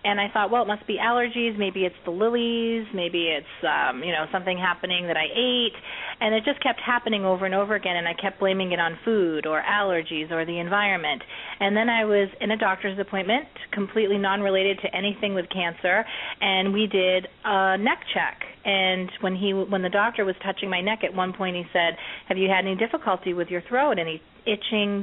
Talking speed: 215 wpm